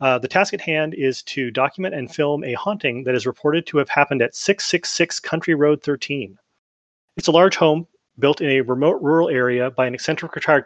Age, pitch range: 30-49, 125-160 Hz